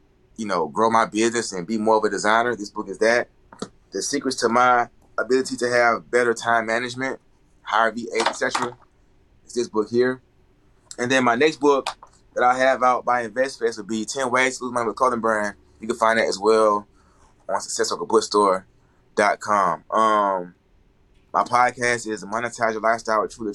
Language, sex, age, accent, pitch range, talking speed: English, male, 20-39, American, 110-130 Hz, 185 wpm